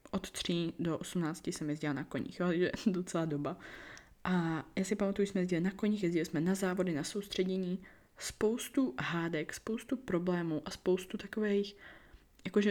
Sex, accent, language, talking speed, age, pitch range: female, native, Czech, 165 wpm, 20-39, 165-195 Hz